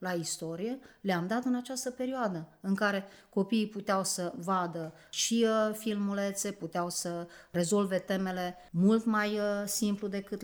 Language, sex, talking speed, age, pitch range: Romanian, female, 130 wpm, 30-49, 175-205 Hz